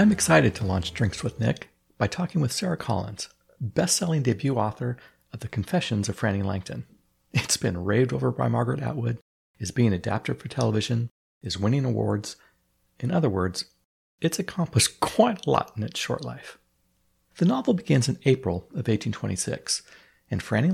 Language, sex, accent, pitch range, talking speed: English, male, American, 100-155 Hz, 165 wpm